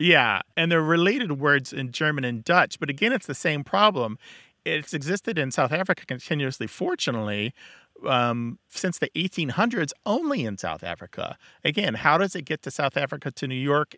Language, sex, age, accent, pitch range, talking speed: English, male, 40-59, American, 120-165 Hz, 175 wpm